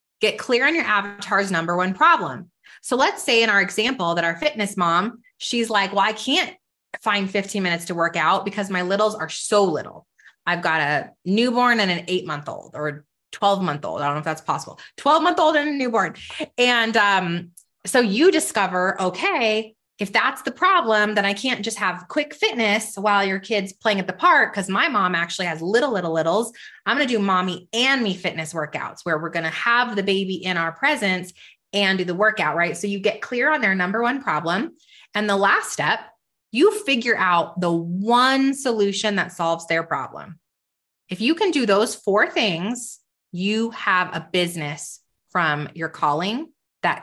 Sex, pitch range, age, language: female, 175-230 Hz, 20-39, English